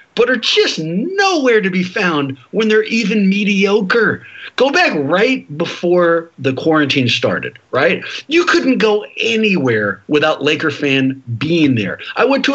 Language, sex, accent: English, male, American